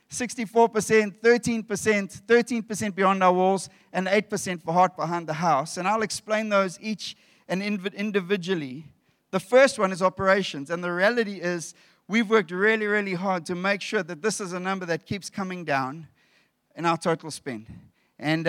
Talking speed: 155 wpm